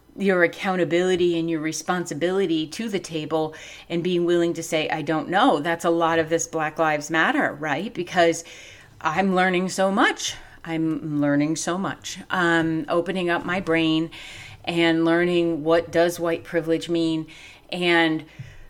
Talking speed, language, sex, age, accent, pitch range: 150 wpm, English, female, 30-49, American, 160-180 Hz